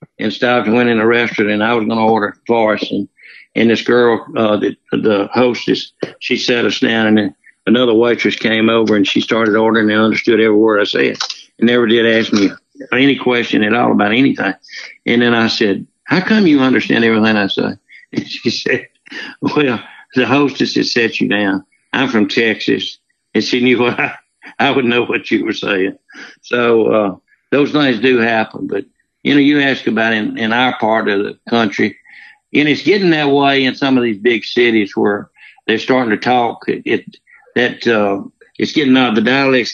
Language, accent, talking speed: English, American, 200 wpm